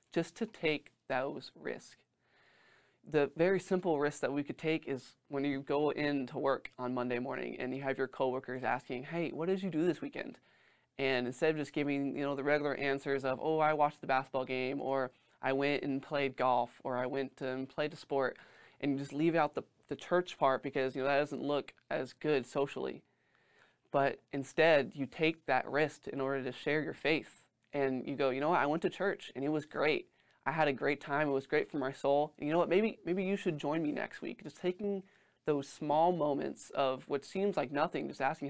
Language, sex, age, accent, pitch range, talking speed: English, male, 20-39, American, 135-155 Hz, 225 wpm